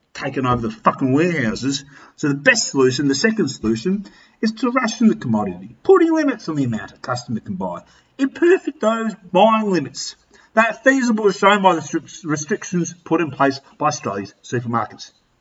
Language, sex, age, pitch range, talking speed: English, male, 40-59, 140-230 Hz, 170 wpm